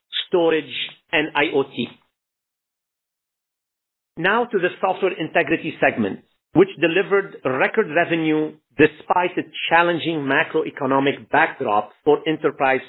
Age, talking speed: 50-69, 95 wpm